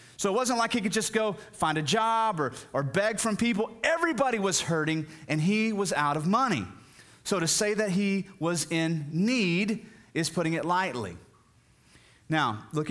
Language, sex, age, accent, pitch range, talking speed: English, male, 30-49, American, 150-220 Hz, 180 wpm